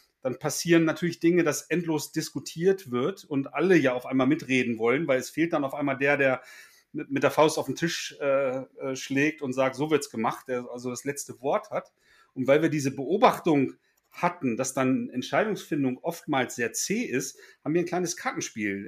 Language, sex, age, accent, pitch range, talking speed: German, male, 40-59, German, 130-170 Hz, 195 wpm